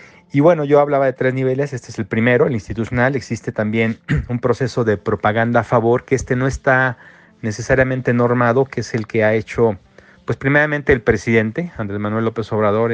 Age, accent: 40-59, Mexican